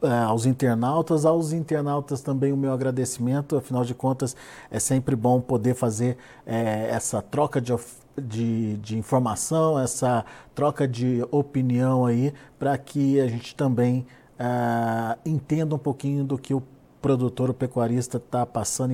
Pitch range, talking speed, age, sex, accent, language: 125-160 Hz, 145 wpm, 50-69, male, Brazilian, Portuguese